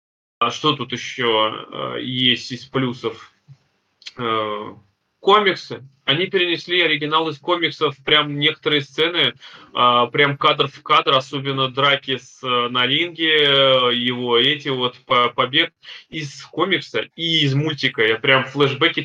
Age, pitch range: 20-39, 115-140 Hz